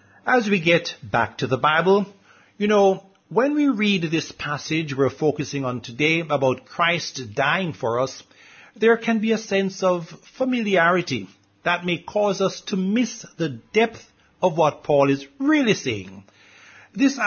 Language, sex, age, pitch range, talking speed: English, male, 60-79, 135-200 Hz, 155 wpm